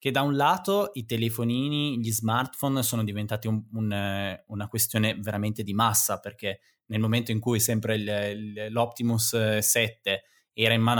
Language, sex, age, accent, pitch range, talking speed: Italian, male, 20-39, native, 105-125 Hz, 140 wpm